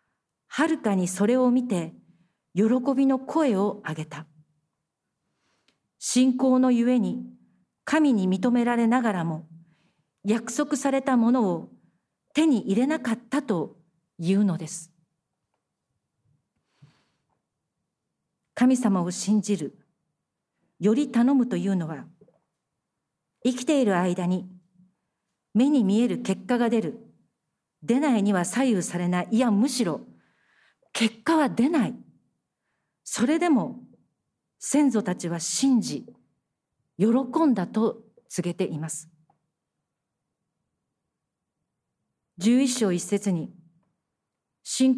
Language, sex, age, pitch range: Japanese, female, 50-69, 180-250 Hz